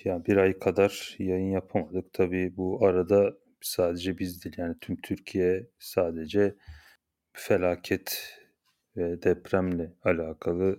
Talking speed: 105 wpm